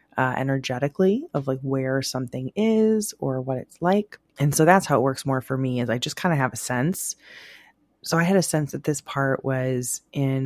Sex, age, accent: female, 20-39, American